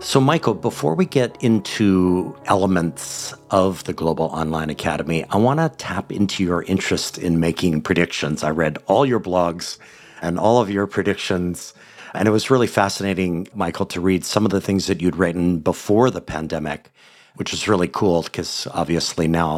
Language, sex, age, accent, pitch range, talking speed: English, male, 50-69, American, 85-100 Hz, 175 wpm